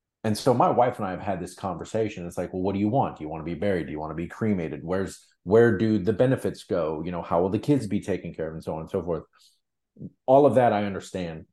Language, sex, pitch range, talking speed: English, male, 90-115 Hz, 290 wpm